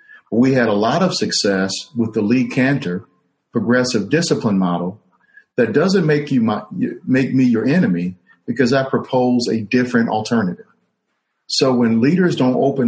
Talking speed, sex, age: 155 wpm, male, 50-69